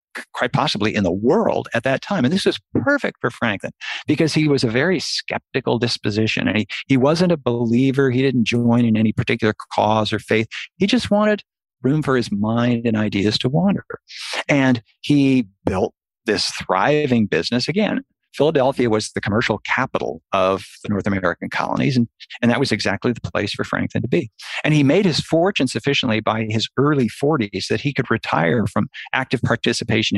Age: 50-69